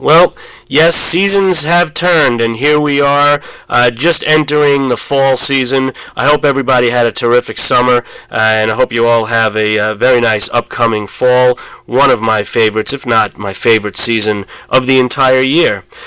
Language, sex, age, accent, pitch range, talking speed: English, male, 30-49, American, 120-140 Hz, 180 wpm